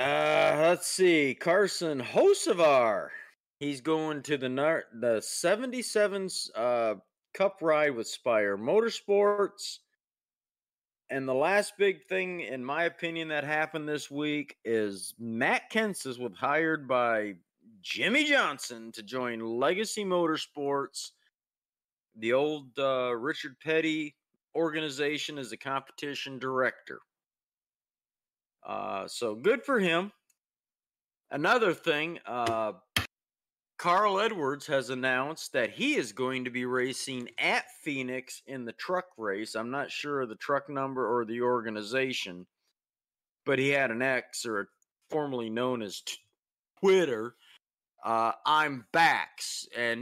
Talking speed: 120 wpm